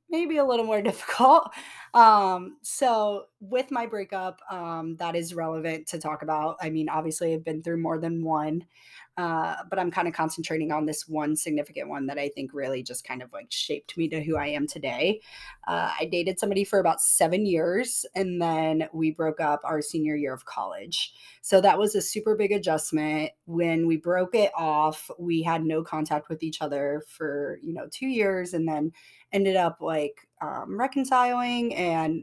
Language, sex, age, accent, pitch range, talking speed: English, female, 20-39, American, 155-190 Hz, 190 wpm